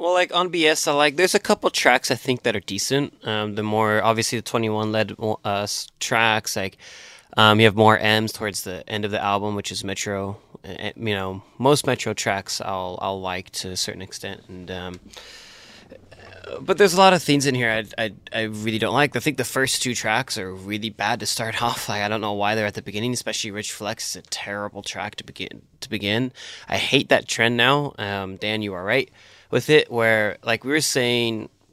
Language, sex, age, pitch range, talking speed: English, male, 20-39, 100-120 Hz, 225 wpm